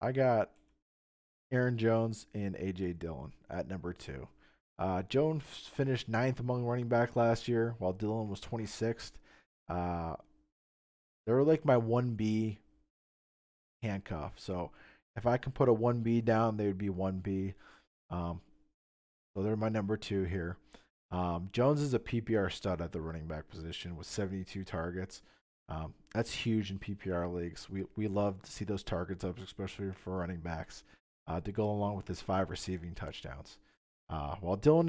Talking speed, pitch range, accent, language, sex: 165 wpm, 90-115 Hz, American, English, male